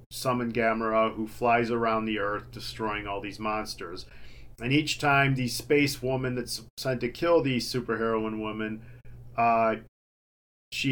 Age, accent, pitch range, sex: 40-59, American, 110-125 Hz, male